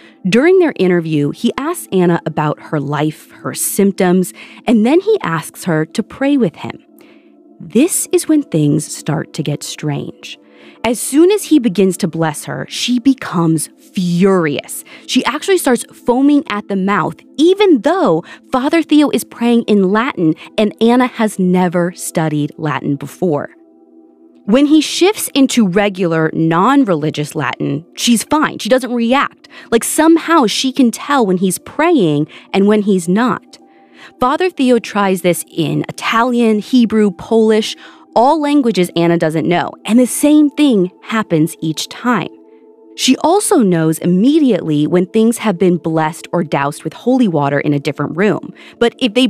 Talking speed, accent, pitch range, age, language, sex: 155 wpm, American, 170-275 Hz, 20-39, English, female